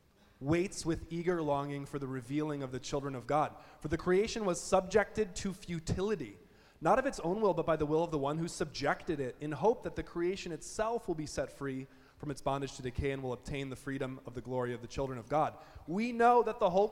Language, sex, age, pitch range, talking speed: English, male, 20-39, 130-165 Hz, 240 wpm